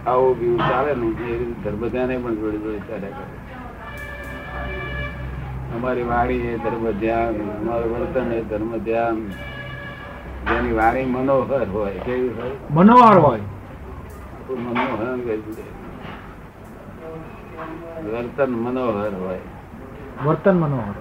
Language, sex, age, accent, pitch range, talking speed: Gujarati, male, 60-79, native, 105-125 Hz, 50 wpm